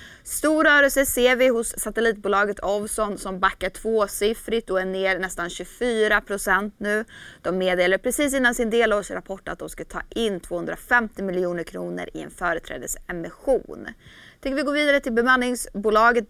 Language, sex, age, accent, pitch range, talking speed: Swedish, female, 20-39, native, 190-245 Hz, 145 wpm